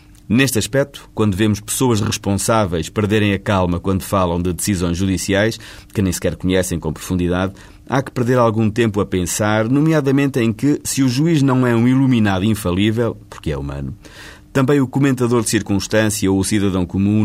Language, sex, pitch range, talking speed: Portuguese, male, 90-115 Hz, 175 wpm